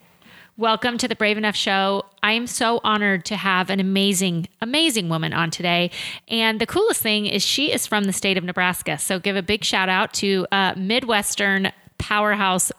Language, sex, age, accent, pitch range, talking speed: English, female, 30-49, American, 185-215 Hz, 190 wpm